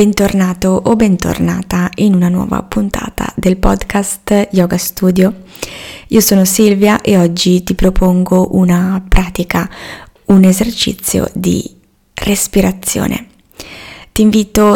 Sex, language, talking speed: female, Italian, 105 wpm